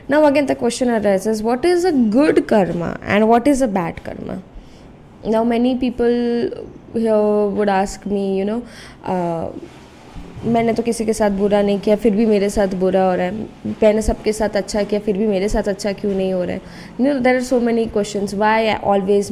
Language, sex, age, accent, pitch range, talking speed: Hindi, female, 20-39, native, 195-230 Hz, 210 wpm